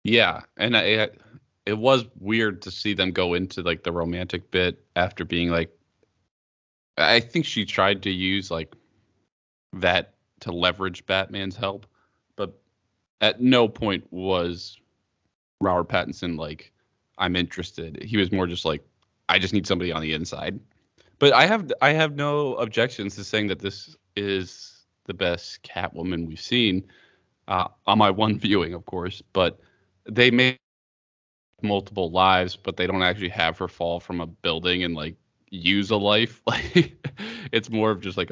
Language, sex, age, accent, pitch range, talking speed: English, male, 20-39, American, 90-105 Hz, 160 wpm